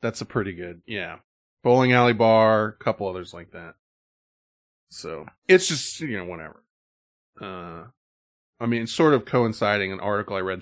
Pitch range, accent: 100-130 Hz, American